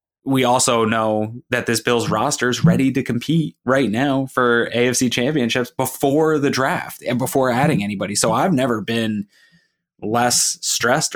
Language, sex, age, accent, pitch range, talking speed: English, male, 20-39, American, 105-125 Hz, 155 wpm